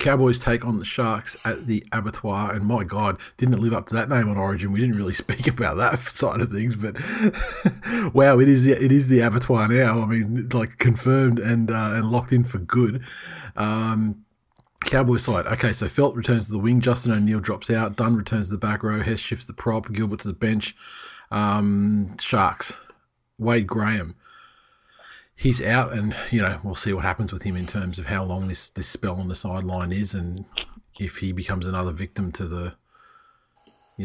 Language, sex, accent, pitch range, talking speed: English, male, Australian, 95-120 Hz, 200 wpm